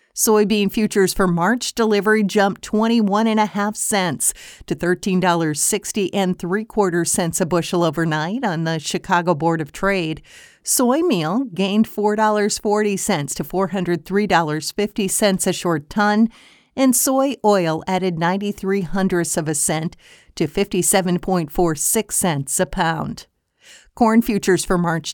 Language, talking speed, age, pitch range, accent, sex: English, 115 wpm, 50-69, 175-215 Hz, American, female